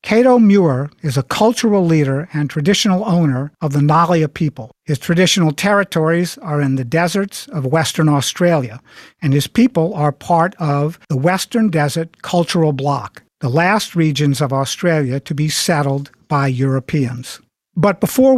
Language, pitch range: English, 145-190 Hz